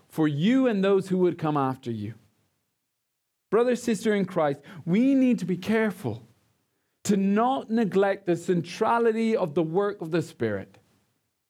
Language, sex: English, male